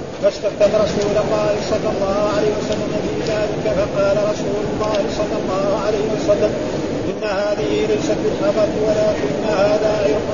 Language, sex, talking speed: Arabic, male, 130 wpm